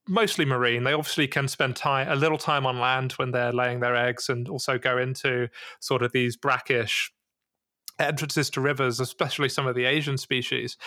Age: 30-49